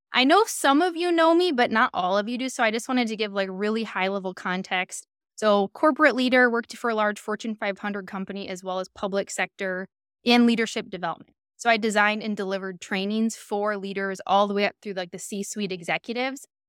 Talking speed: 210 wpm